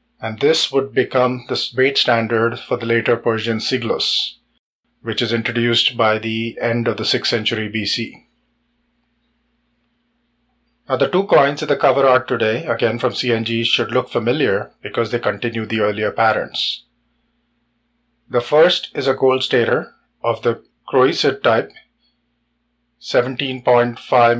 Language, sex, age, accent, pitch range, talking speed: English, male, 30-49, Indian, 115-135 Hz, 135 wpm